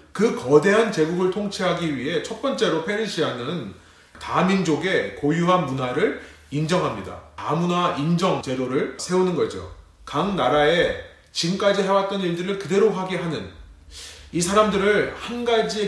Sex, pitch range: male, 140-200 Hz